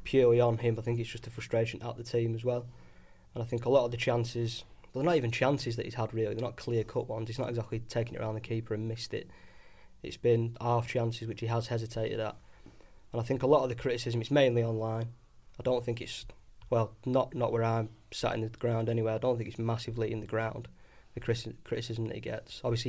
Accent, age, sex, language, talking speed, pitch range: British, 20-39, male, English, 240 wpm, 115-120 Hz